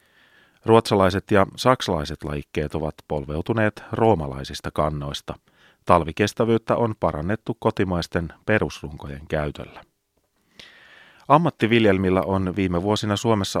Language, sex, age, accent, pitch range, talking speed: Finnish, male, 30-49, native, 80-105 Hz, 85 wpm